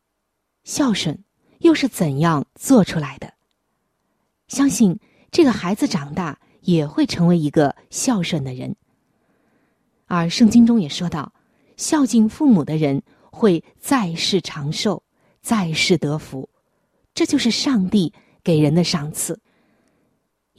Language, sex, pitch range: Chinese, female, 160-240 Hz